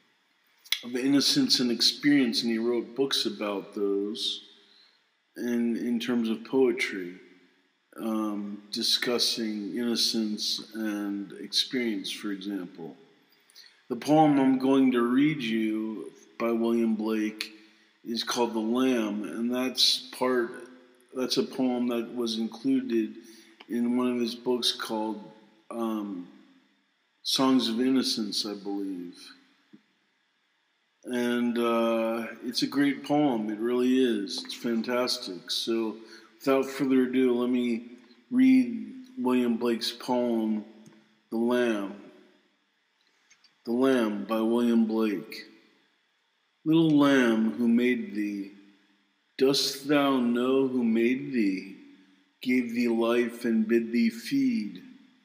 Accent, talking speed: American, 110 wpm